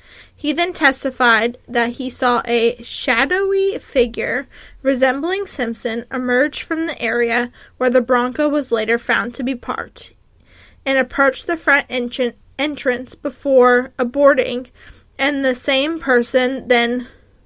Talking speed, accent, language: 130 wpm, American, English